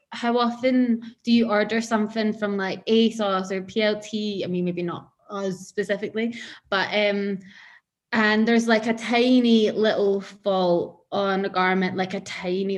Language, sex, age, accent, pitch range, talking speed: English, female, 20-39, British, 185-215 Hz, 150 wpm